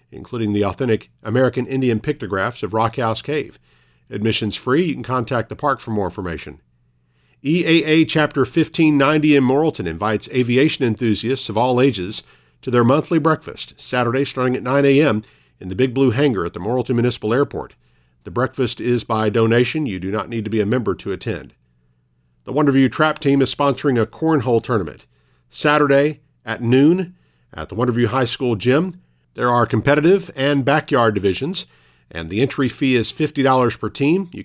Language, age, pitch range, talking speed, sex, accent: English, 50-69, 105-140 Hz, 170 wpm, male, American